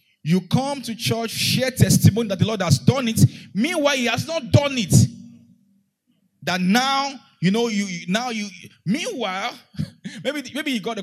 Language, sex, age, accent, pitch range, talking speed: English, male, 30-49, Nigerian, 155-230 Hz, 170 wpm